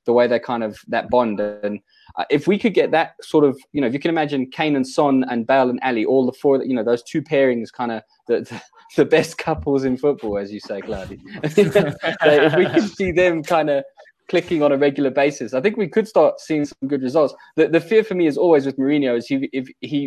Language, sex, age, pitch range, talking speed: English, male, 20-39, 120-145 Hz, 245 wpm